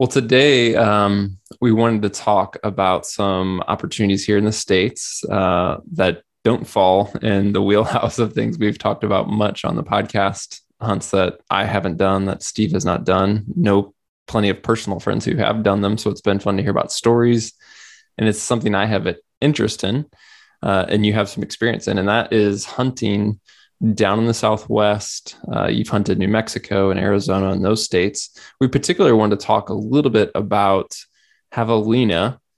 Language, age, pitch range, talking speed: English, 20-39, 100-115 Hz, 185 wpm